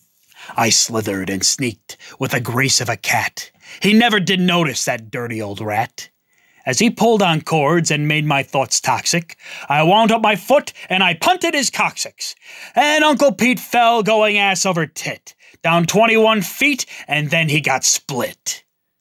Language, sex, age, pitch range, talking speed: English, male, 30-49, 145-215 Hz, 170 wpm